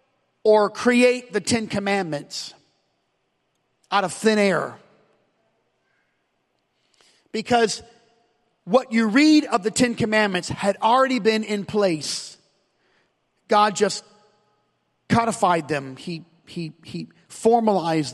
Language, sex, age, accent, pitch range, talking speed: English, male, 40-59, American, 170-225 Hz, 95 wpm